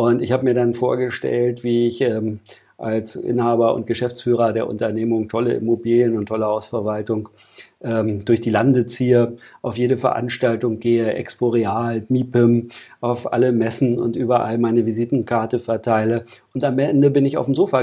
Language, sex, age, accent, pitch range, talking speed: German, male, 40-59, German, 115-130 Hz, 160 wpm